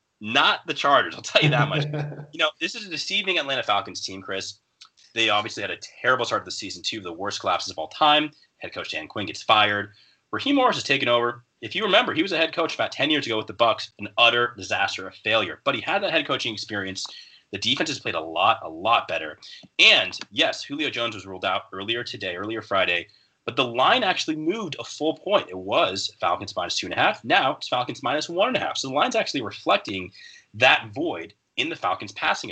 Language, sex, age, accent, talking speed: English, male, 30-49, American, 235 wpm